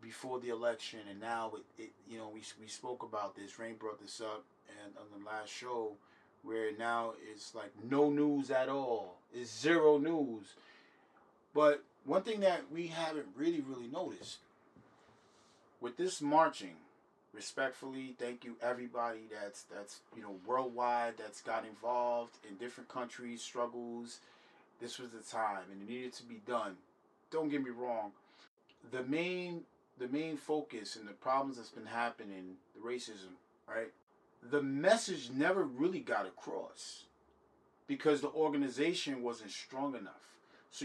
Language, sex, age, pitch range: English, male, 30-49, 115-145 Hz